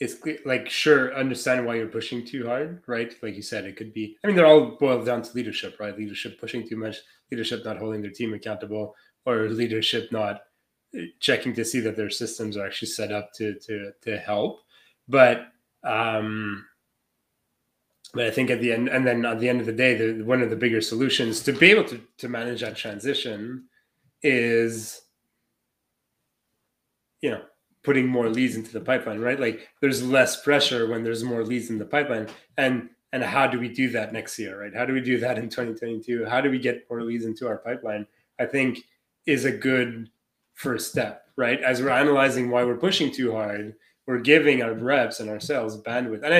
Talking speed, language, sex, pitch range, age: 200 wpm, English, male, 110-130 Hz, 20-39